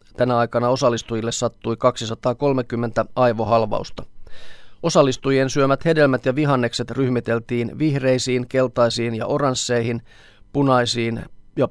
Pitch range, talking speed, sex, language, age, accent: 115-130 Hz, 90 wpm, male, Finnish, 30-49, native